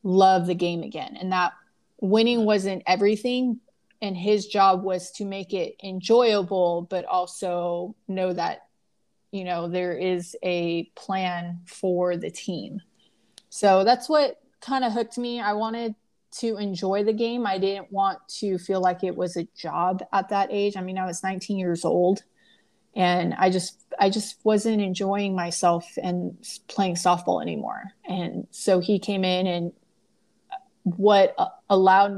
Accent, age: American, 30-49